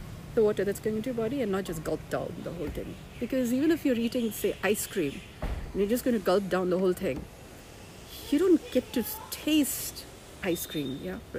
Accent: Indian